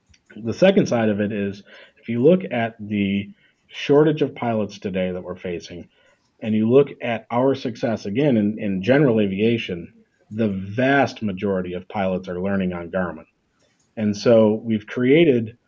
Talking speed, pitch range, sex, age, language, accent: 160 wpm, 100-120 Hz, male, 40-59, English, American